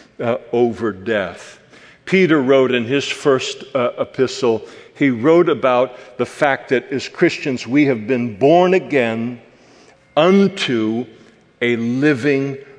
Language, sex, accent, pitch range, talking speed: English, male, American, 135-195 Hz, 120 wpm